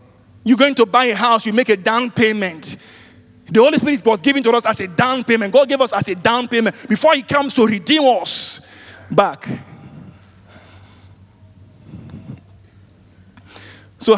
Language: Swedish